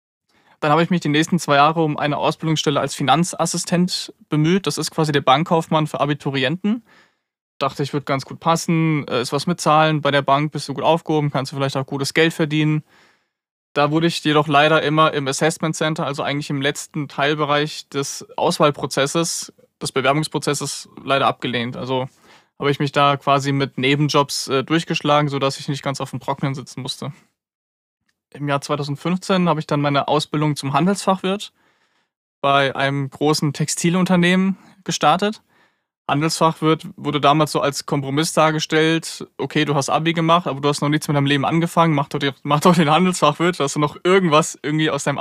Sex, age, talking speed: male, 20-39, 175 wpm